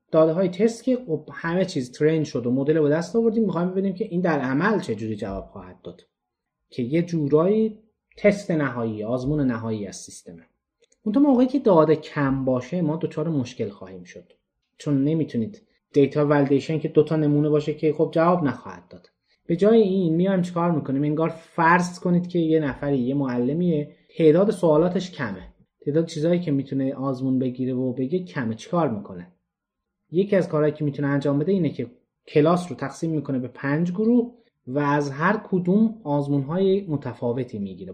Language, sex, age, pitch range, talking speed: Persian, male, 30-49, 130-190 Hz, 175 wpm